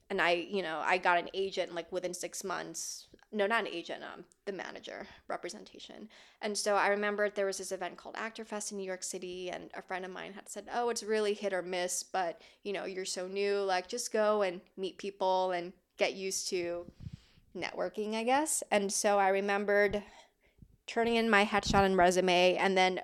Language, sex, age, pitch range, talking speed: English, female, 20-39, 180-210 Hz, 205 wpm